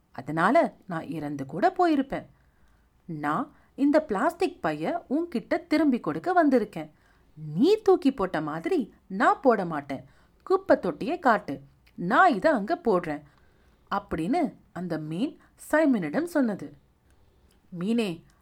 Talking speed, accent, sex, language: 110 wpm, native, female, Tamil